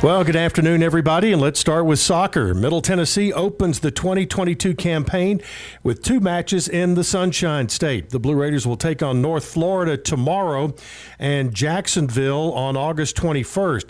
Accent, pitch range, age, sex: American, 135-170 Hz, 50-69, male